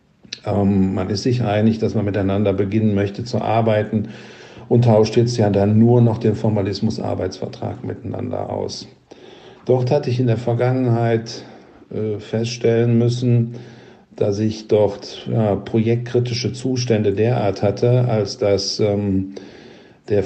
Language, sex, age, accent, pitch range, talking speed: German, male, 50-69, German, 100-120 Hz, 120 wpm